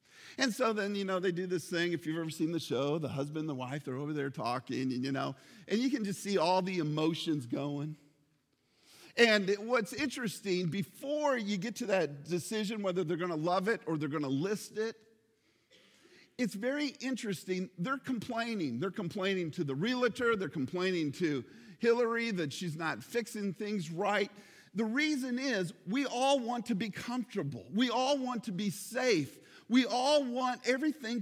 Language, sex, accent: English, male, American